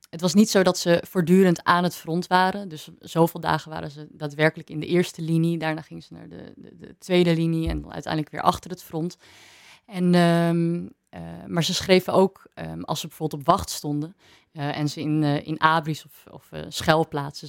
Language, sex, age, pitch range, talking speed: Dutch, female, 30-49, 150-175 Hz, 200 wpm